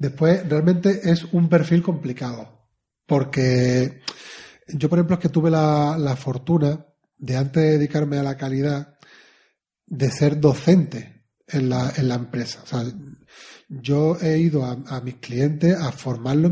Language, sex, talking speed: Spanish, male, 155 wpm